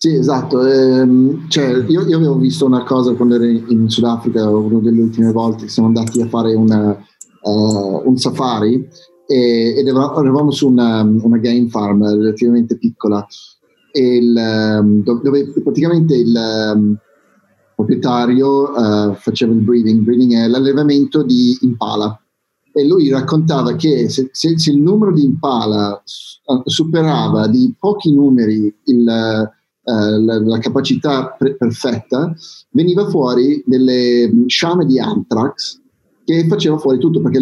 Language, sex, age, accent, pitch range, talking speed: Italian, male, 30-49, native, 115-140 Hz, 135 wpm